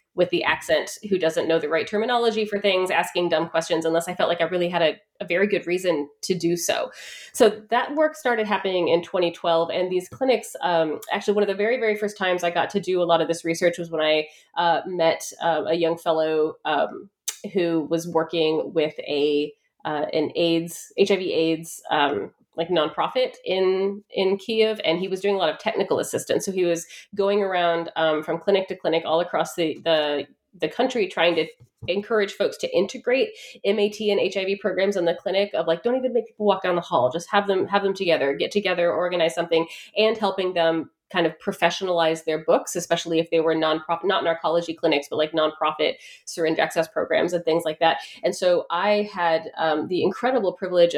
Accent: American